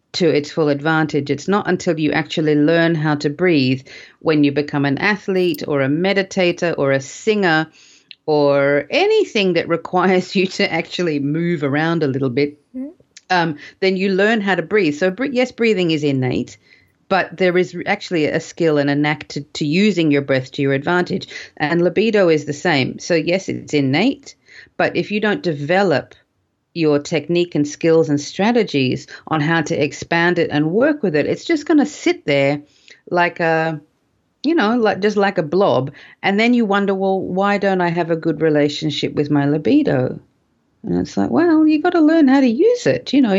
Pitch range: 150-200 Hz